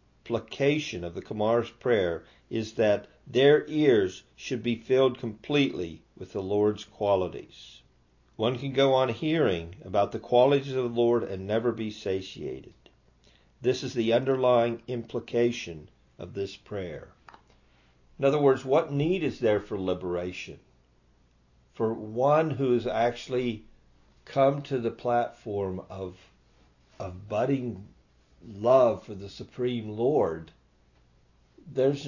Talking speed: 125 wpm